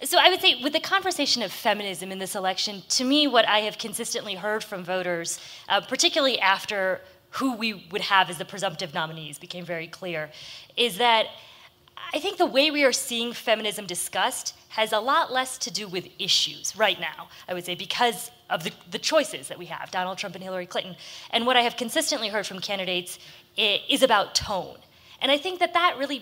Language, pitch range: English, 185-250 Hz